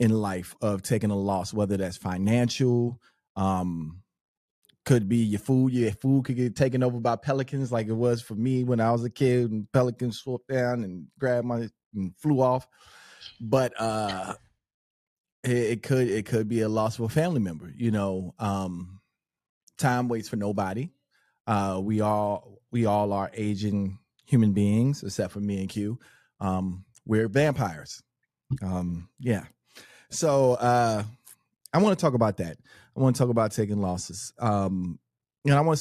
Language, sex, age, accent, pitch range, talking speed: English, male, 30-49, American, 100-125 Hz, 170 wpm